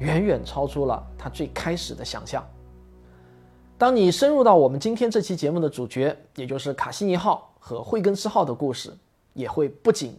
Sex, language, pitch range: male, Chinese, 135-205 Hz